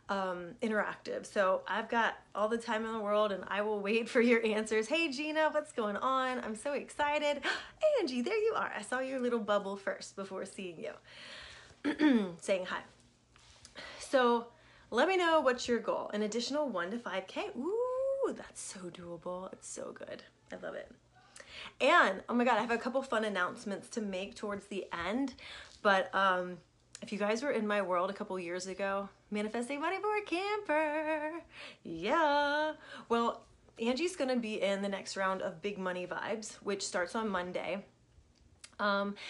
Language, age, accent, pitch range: English, 30-49, American, 205-305 Hz